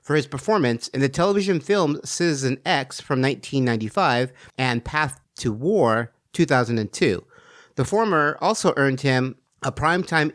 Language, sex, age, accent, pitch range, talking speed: English, male, 50-69, American, 125-175 Hz, 135 wpm